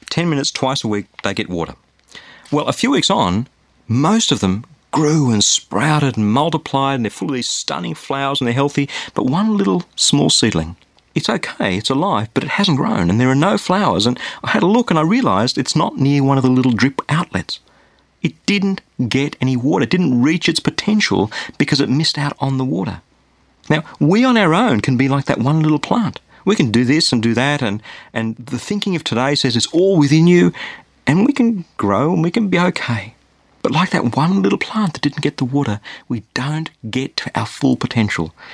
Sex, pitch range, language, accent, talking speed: male, 125-165 Hz, English, Australian, 220 wpm